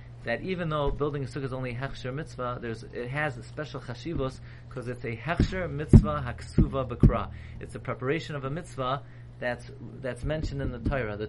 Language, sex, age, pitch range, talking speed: English, male, 30-49, 120-150 Hz, 190 wpm